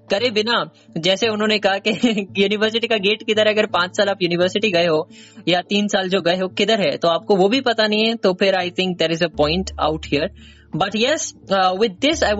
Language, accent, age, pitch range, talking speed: Hindi, native, 20-39, 185-245 Hz, 230 wpm